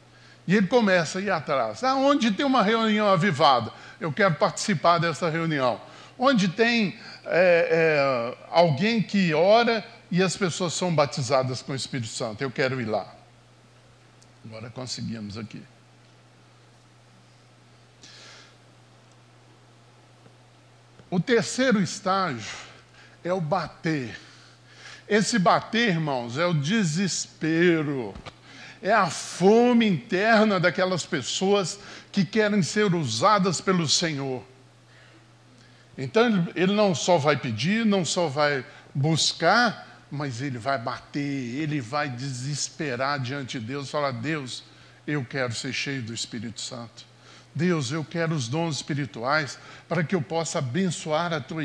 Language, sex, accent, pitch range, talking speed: Portuguese, male, Brazilian, 130-190 Hz, 120 wpm